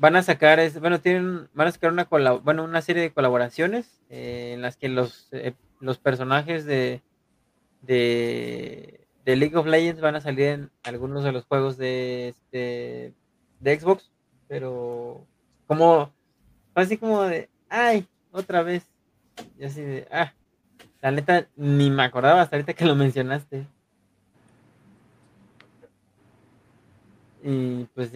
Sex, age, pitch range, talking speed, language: male, 20-39, 125-165 Hz, 140 wpm, Spanish